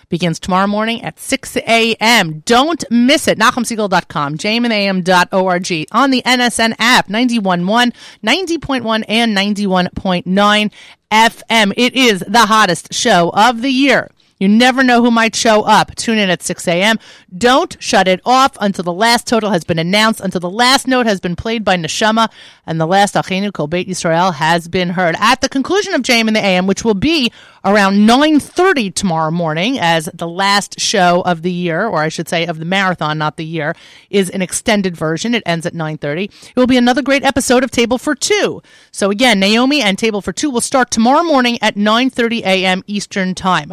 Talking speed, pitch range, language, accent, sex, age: 185 wpm, 180-240 Hz, English, American, female, 30-49